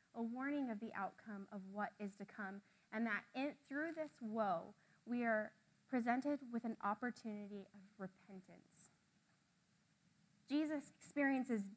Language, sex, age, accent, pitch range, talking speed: English, female, 20-39, American, 200-255 Hz, 135 wpm